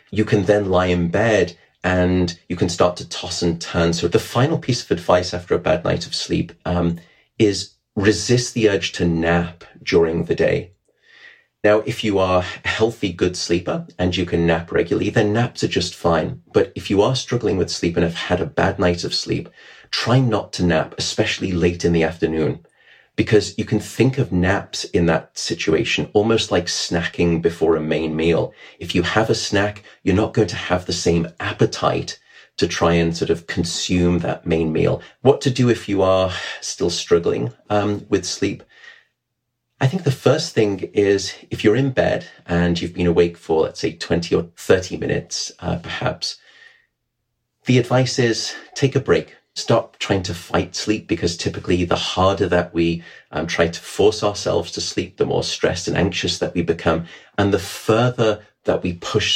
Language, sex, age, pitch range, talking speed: English, male, 30-49, 85-110 Hz, 190 wpm